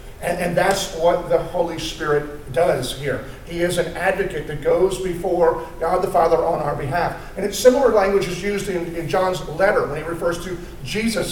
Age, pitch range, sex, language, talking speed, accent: 40-59, 140-180 Hz, male, English, 195 wpm, American